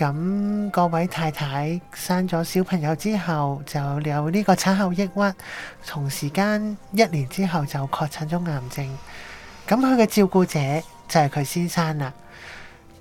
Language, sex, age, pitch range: Chinese, male, 20-39, 150-190 Hz